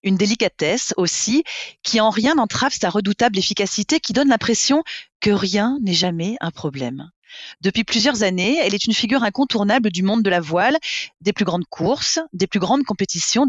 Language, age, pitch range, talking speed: French, 30-49, 180-245 Hz, 180 wpm